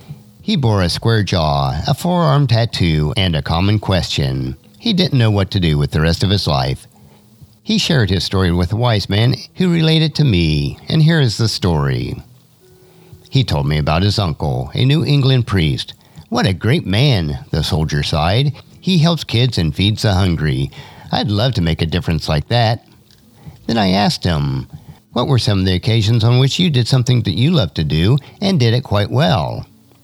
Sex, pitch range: male, 85-135 Hz